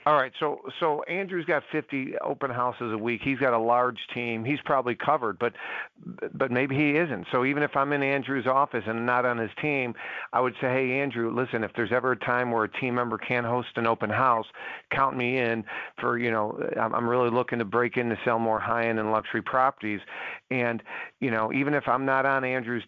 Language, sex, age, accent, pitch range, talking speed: English, male, 50-69, American, 115-135 Hz, 225 wpm